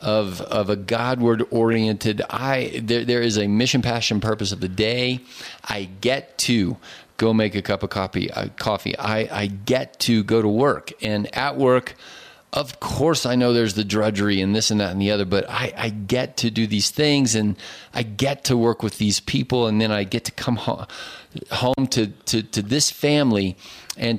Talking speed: 205 wpm